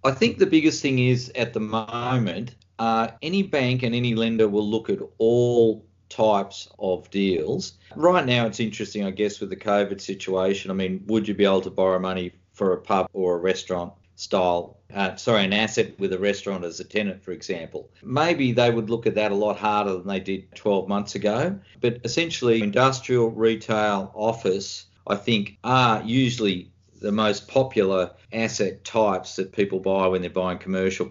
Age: 40-59